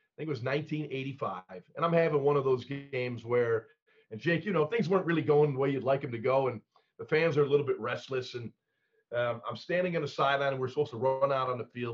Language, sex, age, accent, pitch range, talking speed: English, male, 40-59, American, 120-155 Hz, 260 wpm